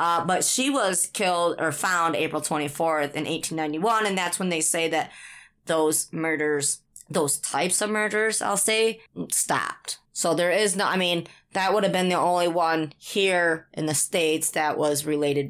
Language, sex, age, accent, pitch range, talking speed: English, female, 20-39, American, 150-190 Hz, 180 wpm